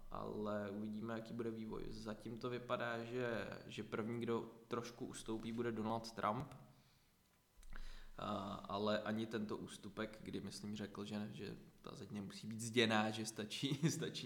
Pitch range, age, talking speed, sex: 100-115 Hz, 20-39, 145 wpm, male